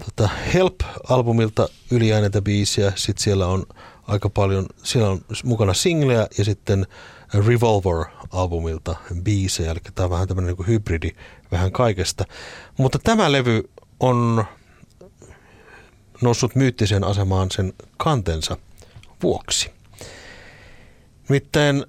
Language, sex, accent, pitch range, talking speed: Finnish, male, native, 90-115 Hz, 95 wpm